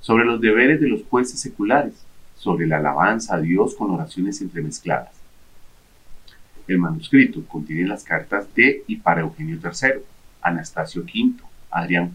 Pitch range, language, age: 90-140 Hz, Spanish, 40-59